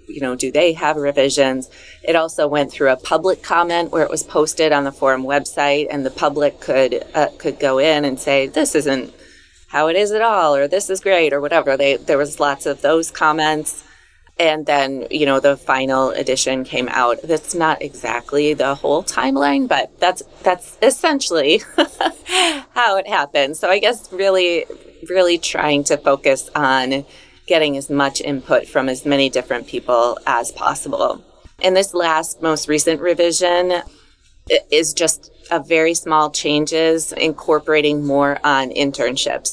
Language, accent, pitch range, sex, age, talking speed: English, American, 140-165 Hz, female, 30-49, 165 wpm